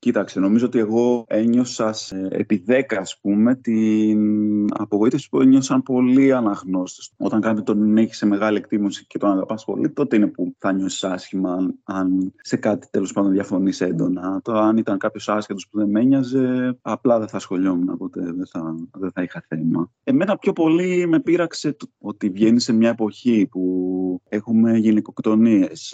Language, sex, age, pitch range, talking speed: Greek, male, 20-39, 95-120 Hz, 170 wpm